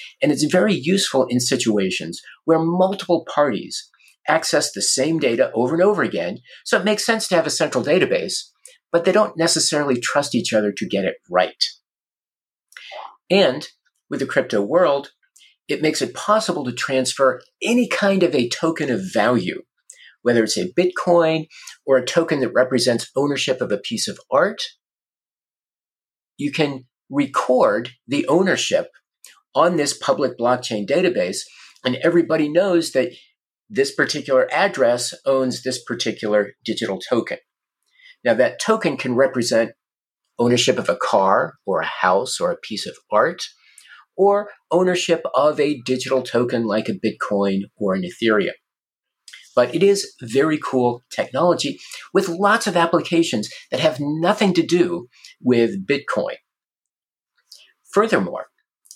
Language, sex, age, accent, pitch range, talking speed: English, male, 50-69, American, 125-180 Hz, 140 wpm